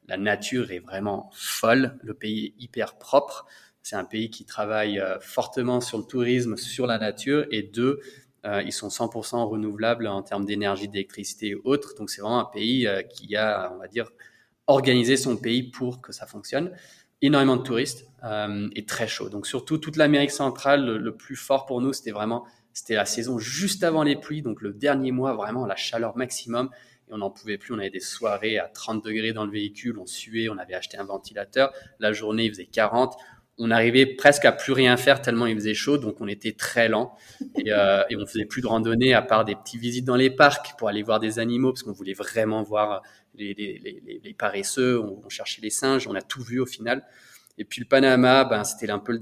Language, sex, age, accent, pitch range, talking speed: French, male, 20-39, French, 105-130 Hz, 220 wpm